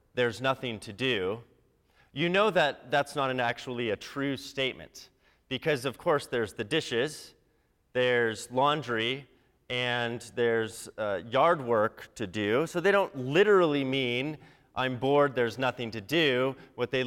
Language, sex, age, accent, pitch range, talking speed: English, male, 30-49, American, 110-135 Hz, 145 wpm